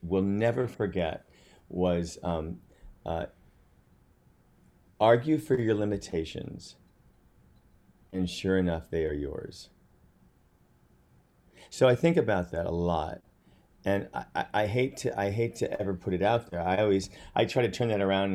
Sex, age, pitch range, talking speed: male, 40-59, 90-120 Hz, 145 wpm